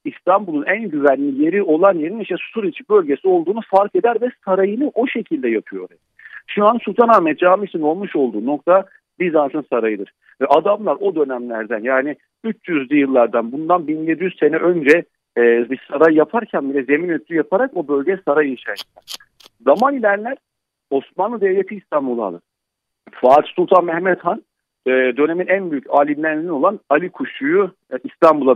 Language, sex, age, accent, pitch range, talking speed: Turkish, male, 50-69, native, 145-210 Hz, 140 wpm